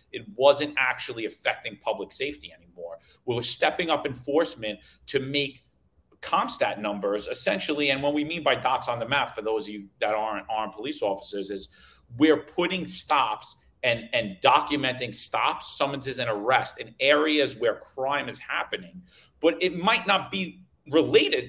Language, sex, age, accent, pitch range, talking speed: English, male, 40-59, American, 120-155 Hz, 160 wpm